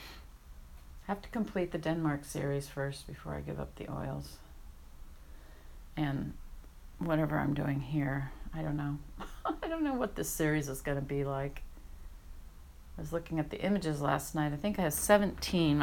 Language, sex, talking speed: English, female, 170 wpm